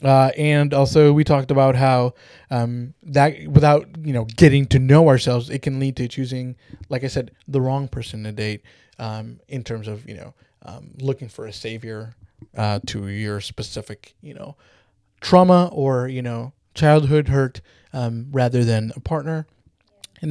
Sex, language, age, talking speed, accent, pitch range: male, English, 20-39, 170 wpm, American, 115-145 Hz